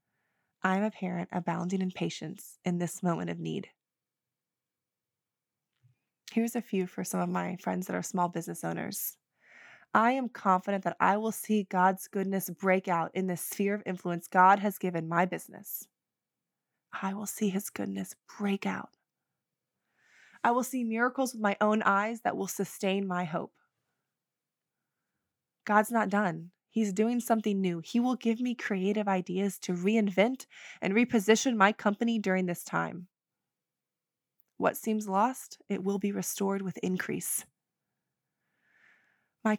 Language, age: English, 20-39